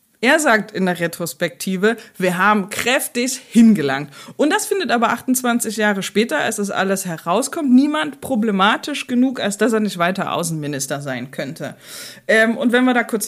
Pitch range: 175-245 Hz